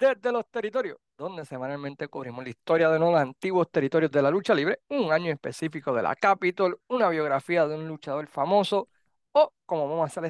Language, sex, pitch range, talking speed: Spanish, male, 150-200 Hz, 190 wpm